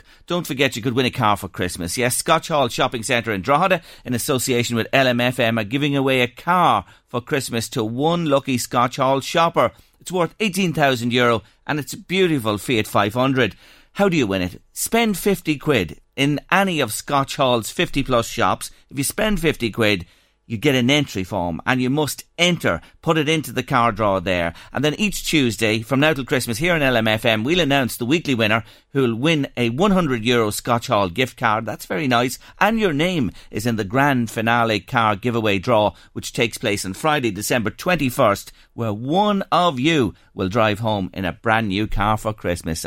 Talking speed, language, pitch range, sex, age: 195 wpm, English, 110-150 Hz, male, 40-59